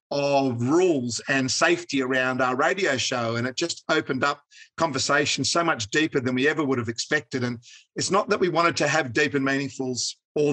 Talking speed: 200 wpm